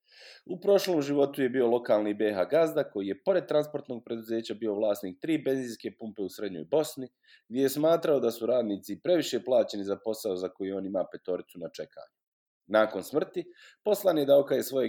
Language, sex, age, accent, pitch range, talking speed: English, male, 30-49, Croatian, 100-145 Hz, 175 wpm